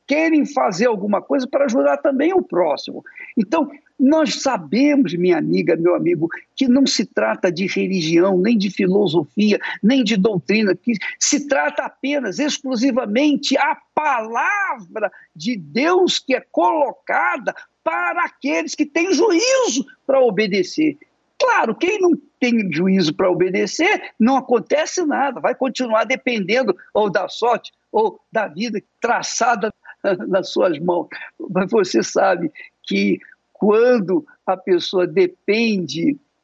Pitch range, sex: 205-305 Hz, male